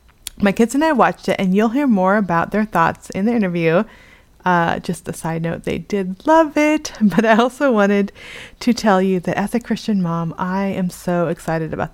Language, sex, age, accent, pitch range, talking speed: English, female, 30-49, American, 175-220 Hz, 210 wpm